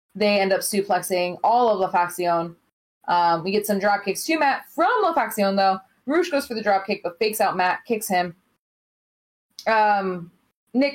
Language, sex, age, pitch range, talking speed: English, female, 20-39, 180-225 Hz, 180 wpm